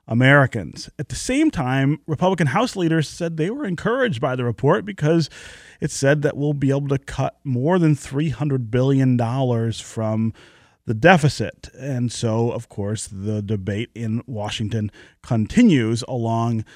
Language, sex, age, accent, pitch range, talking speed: English, male, 30-49, American, 115-155 Hz, 145 wpm